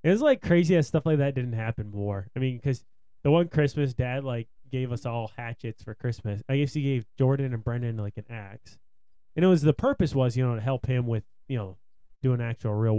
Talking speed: 240 wpm